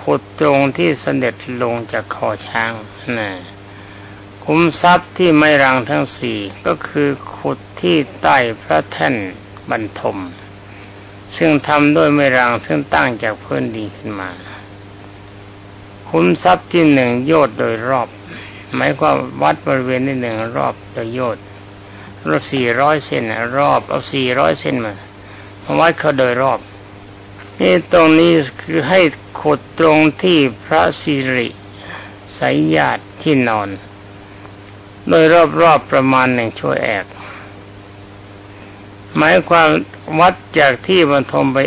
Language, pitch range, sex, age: Thai, 100-140 Hz, male, 60-79